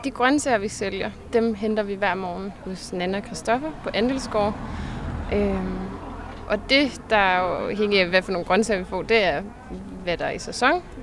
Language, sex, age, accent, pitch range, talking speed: Danish, female, 20-39, native, 195-230 Hz, 185 wpm